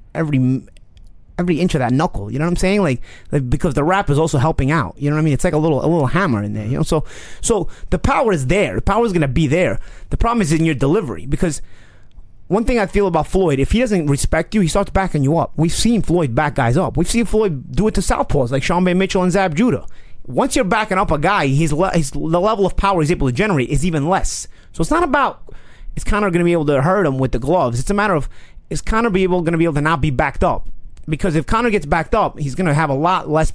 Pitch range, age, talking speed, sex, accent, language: 140-185 Hz, 30-49, 280 wpm, male, American, English